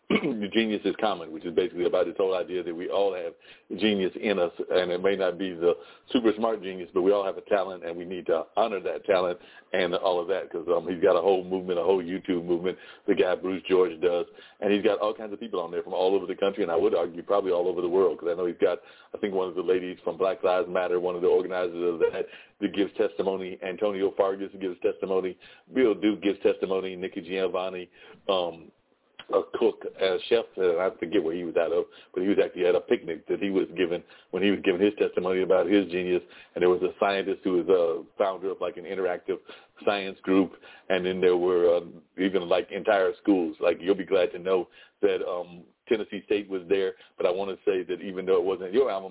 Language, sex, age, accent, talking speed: English, male, 40-59, American, 240 wpm